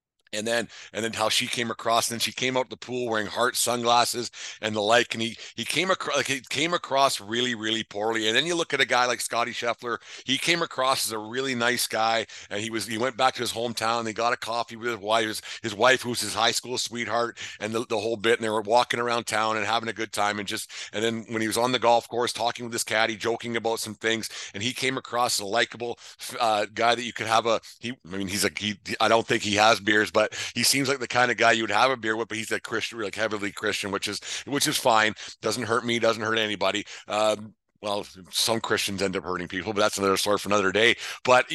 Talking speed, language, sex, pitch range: 265 wpm, English, male, 110-120 Hz